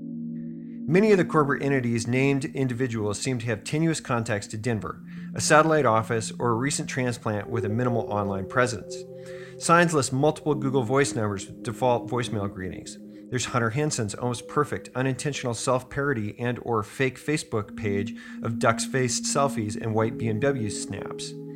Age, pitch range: 40-59, 110-145 Hz